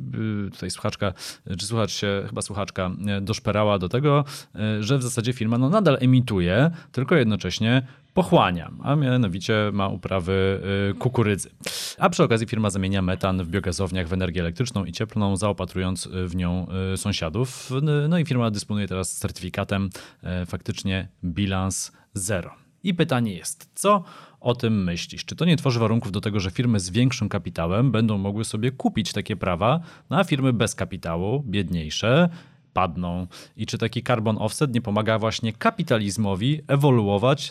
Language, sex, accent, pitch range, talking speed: Polish, male, native, 95-125 Hz, 145 wpm